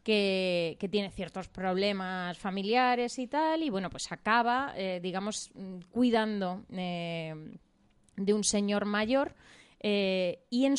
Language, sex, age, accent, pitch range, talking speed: Spanish, female, 20-39, Spanish, 185-235 Hz, 130 wpm